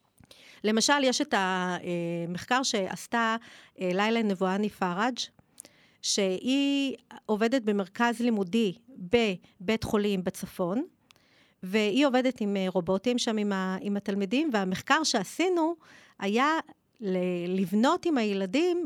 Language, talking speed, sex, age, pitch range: Hebrew, 90 wpm, female, 40-59, 195-245 Hz